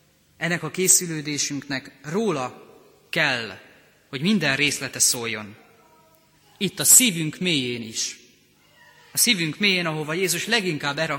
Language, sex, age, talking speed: Hungarian, male, 30-49, 105 wpm